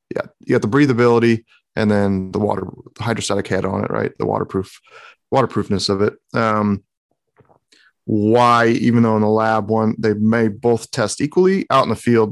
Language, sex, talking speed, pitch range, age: English, male, 180 wpm, 105-120 Hz, 30-49